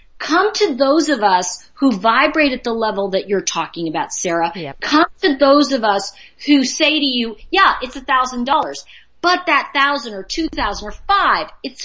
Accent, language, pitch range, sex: American, English, 240-330 Hz, female